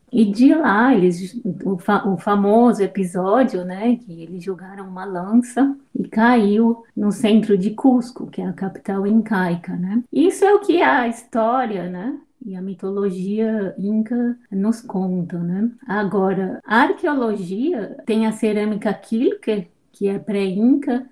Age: 20-39